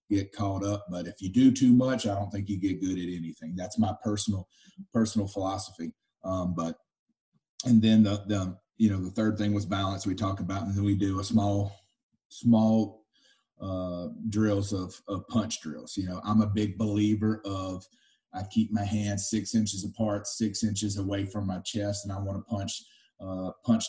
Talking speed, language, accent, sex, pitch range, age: 195 wpm, English, American, male, 95-105 Hz, 30-49